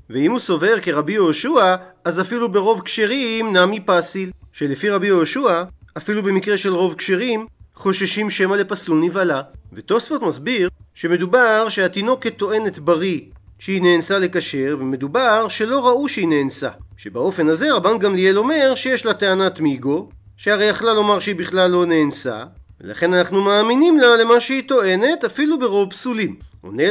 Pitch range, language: 170-225 Hz, Hebrew